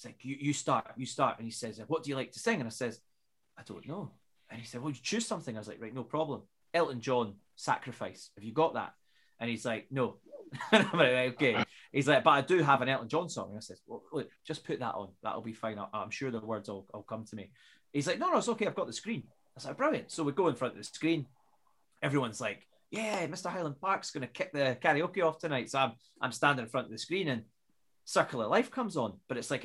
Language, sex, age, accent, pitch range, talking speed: English, male, 30-49, British, 115-160 Hz, 255 wpm